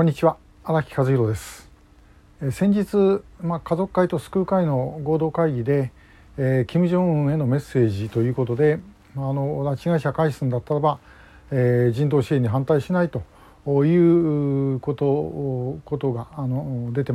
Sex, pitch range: male, 125-155 Hz